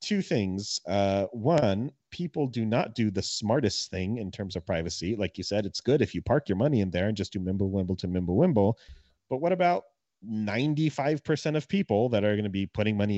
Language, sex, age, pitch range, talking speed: English, male, 30-49, 90-115 Hz, 205 wpm